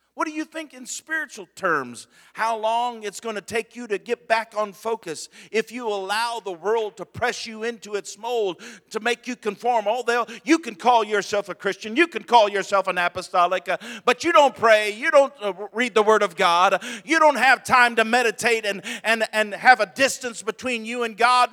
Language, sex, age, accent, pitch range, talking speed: English, male, 50-69, American, 160-235 Hz, 210 wpm